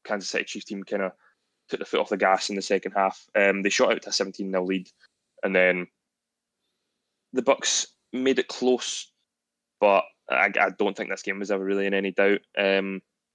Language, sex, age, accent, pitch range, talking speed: English, male, 20-39, British, 95-105 Hz, 200 wpm